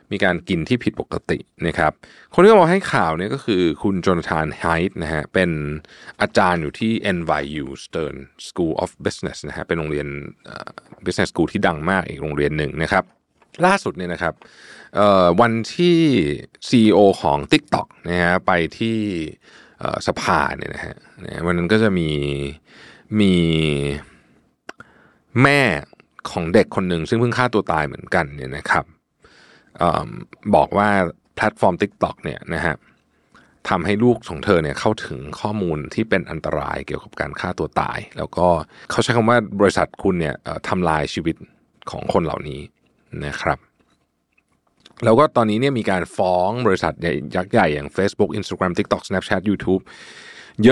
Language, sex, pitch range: Thai, male, 80-110 Hz